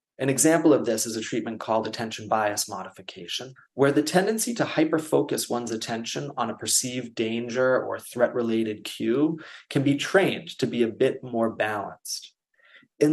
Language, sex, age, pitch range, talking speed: English, male, 30-49, 110-145 Hz, 165 wpm